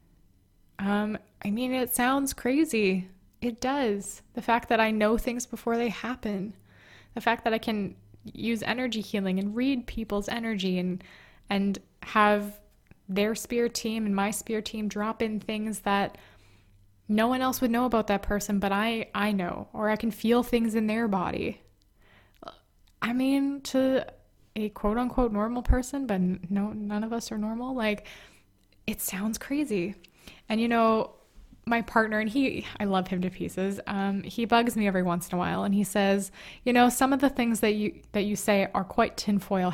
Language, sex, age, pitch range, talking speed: English, female, 20-39, 200-235 Hz, 180 wpm